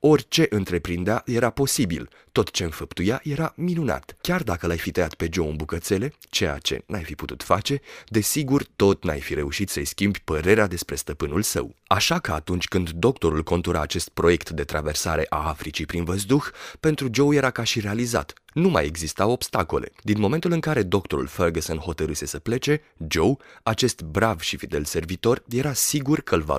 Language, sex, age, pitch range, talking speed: Romanian, male, 30-49, 85-125 Hz, 180 wpm